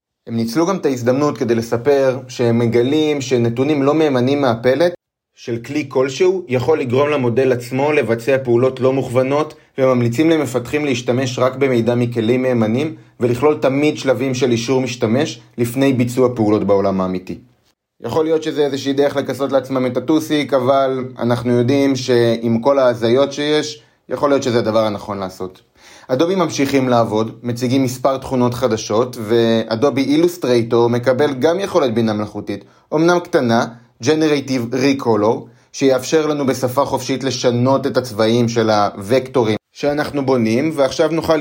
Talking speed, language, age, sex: 140 wpm, Hebrew, 30-49, male